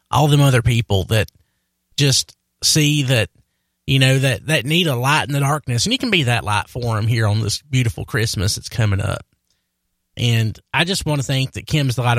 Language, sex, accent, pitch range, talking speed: English, male, American, 105-145 Hz, 215 wpm